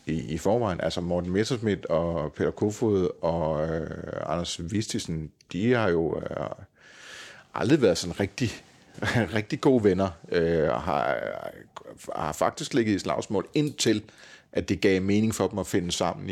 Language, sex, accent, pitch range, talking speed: Danish, male, native, 90-115 Hz, 155 wpm